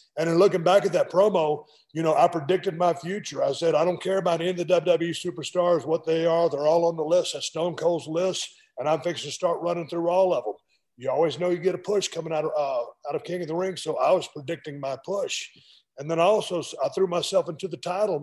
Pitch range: 150-185 Hz